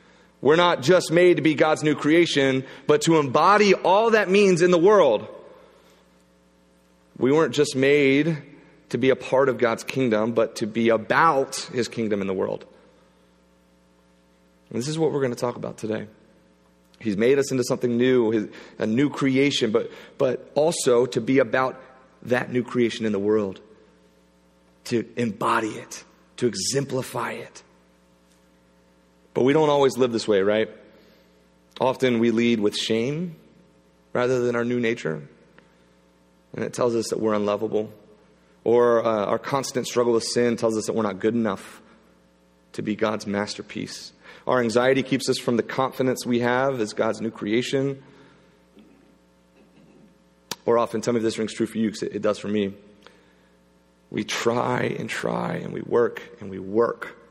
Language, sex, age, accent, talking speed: English, male, 30-49, American, 165 wpm